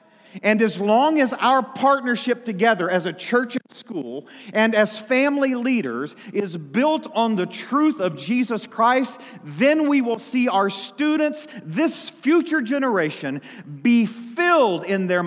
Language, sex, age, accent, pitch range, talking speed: English, male, 40-59, American, 165-240 Hz, 145 wpm